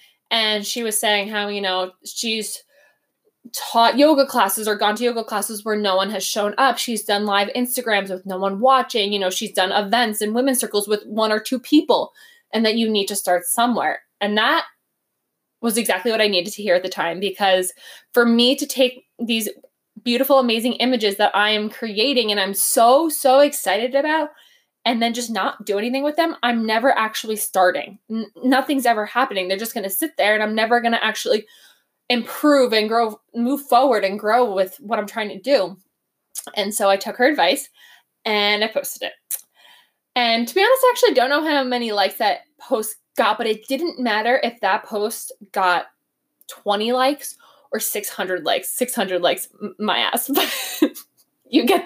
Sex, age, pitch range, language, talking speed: female, 20-39, 205-260 Hz, English, 190 wpm